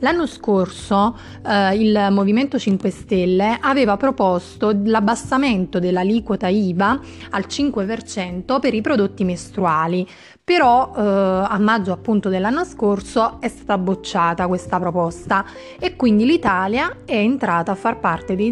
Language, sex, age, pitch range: Italian, female, 30-49, 185-230 Hz